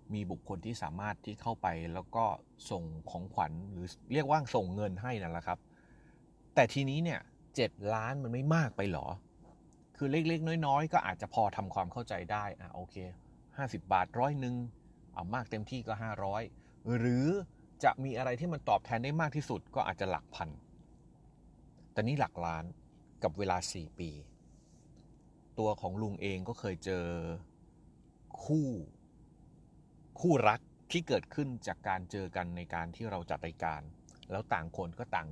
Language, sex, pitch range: Thai, male, 90-125 Hz